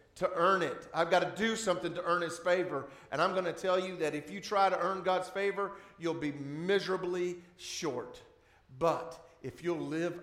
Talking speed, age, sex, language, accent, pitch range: 200 wpm, 50-69, male, English, American, 145-185 Hz